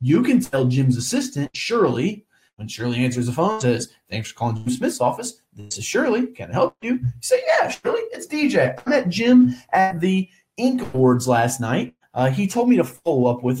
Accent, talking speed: American, 210 wpm